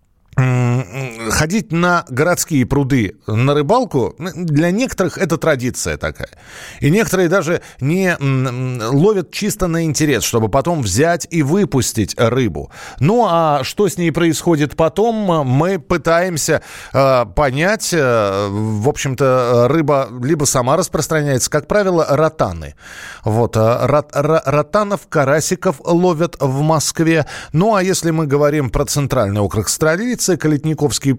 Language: Russian